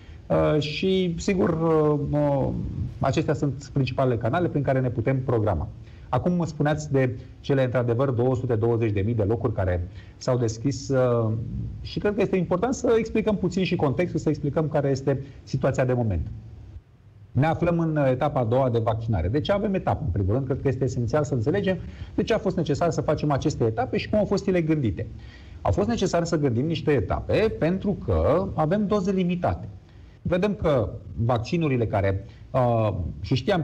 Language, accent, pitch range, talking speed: Romanian, native, 115-160 Hz, 165 wpm